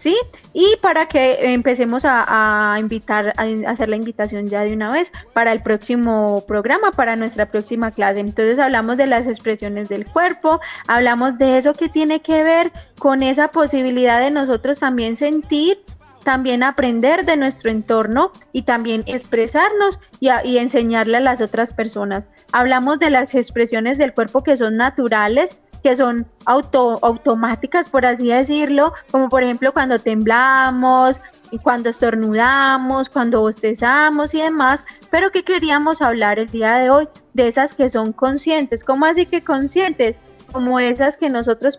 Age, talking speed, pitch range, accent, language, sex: 20-39, 155 wpm, 225-285 Hz, Colombian, Spanish, female